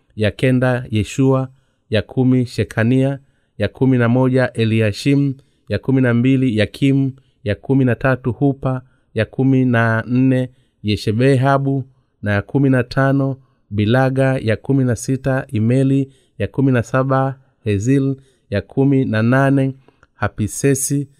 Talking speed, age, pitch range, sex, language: 115 wpm, 30-49, 105-135 Hz, male, Swahili